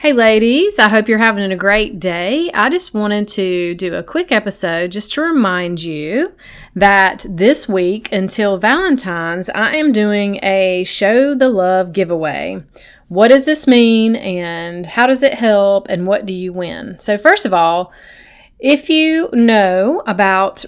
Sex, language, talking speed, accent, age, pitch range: female, English, 160 wpm, American, 30-49, 185-240 Hz